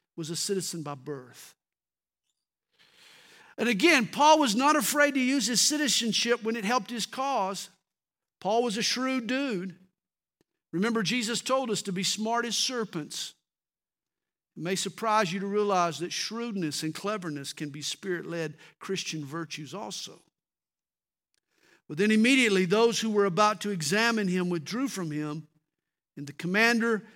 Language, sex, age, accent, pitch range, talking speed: English, male, 50-69, American, 145-210 Hz, 150 wpm